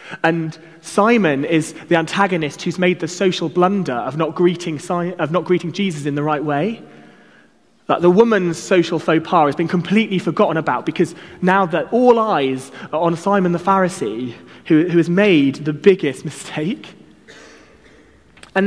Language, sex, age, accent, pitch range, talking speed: English, male, 30-49, British, 155-195 Hz, 165 wpm